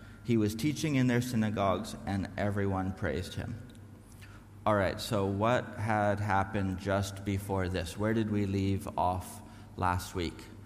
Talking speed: 145 wpm